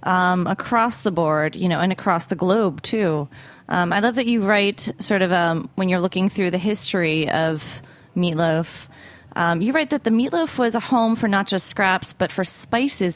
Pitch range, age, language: 170-215 Hz, 20-39, English